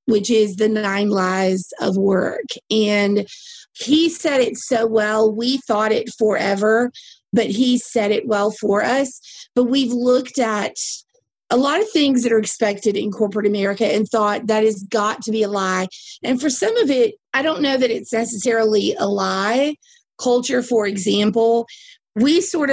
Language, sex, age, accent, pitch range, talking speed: English, female, 30-49, American, 210-255 Hz, 170 wpm